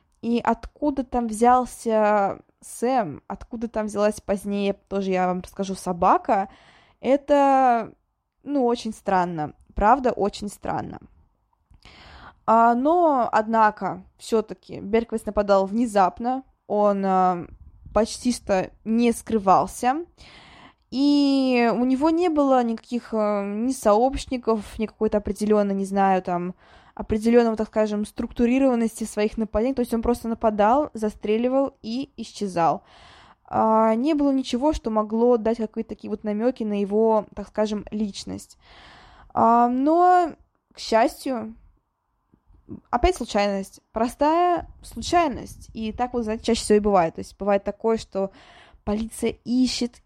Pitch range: 210-245 Hz